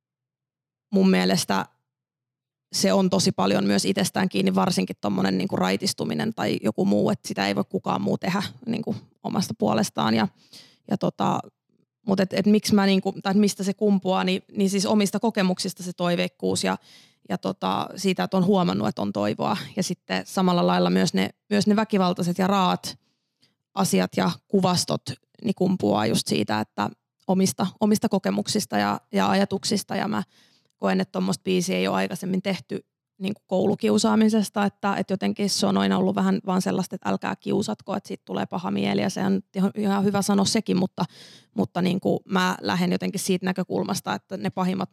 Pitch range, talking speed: 175-195 Hz, 170 wpm